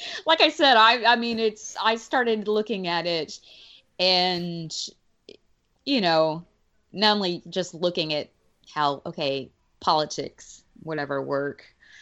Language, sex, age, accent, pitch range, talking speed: English, female, 20-39, American, 160-210 Hz, 125 wpm